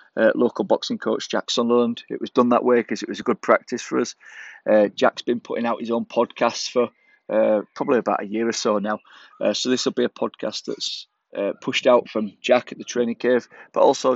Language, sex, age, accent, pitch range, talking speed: English, male, 20-39, British, 110-120 Hz, 235 wpm